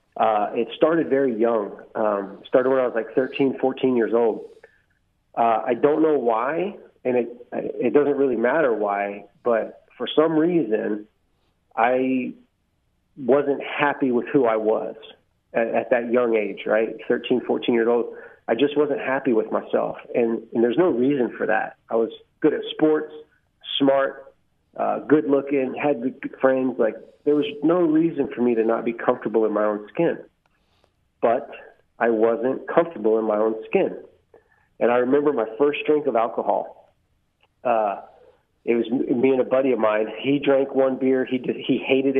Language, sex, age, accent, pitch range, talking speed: English, male, 30-49, American, 115-145 Hz, 170 wpm